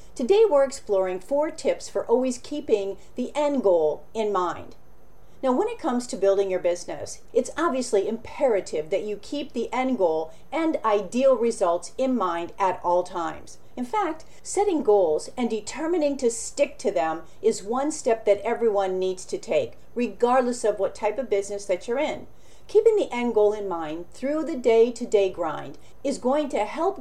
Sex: female